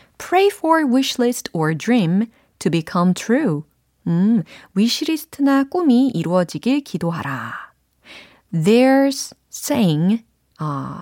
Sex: female